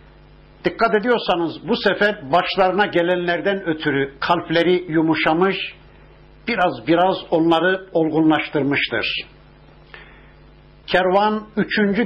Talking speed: 75 wpm